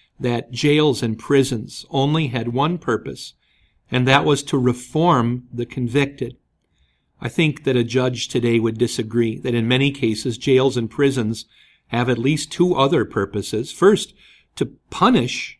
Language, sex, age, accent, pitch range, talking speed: English, male, 50-69, American, 115-140 Hz, 150 wpm